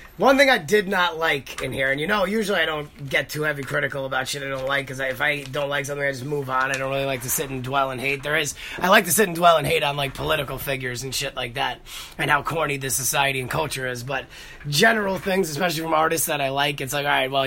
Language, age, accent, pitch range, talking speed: English, 30-49, American, 135-160 Hz, 285 wpm